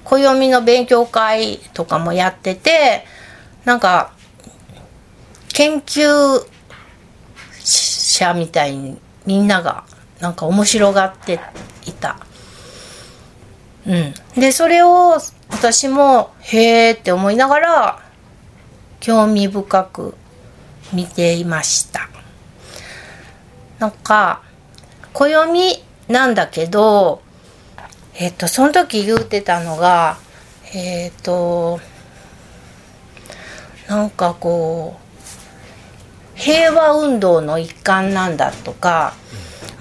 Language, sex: Japanese, female